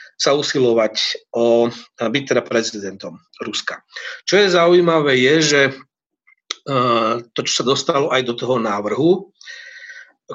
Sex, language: male, Slovak